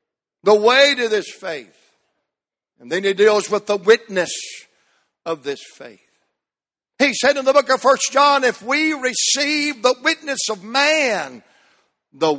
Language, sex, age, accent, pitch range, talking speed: English, male, 60-79, American, 185-270 Hz, 150 wpm